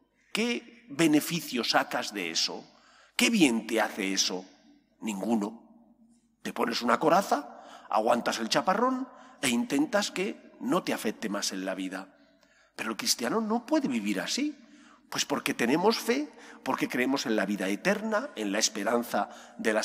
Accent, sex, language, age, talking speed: Spanish, male, English, 40-59, 150 wpm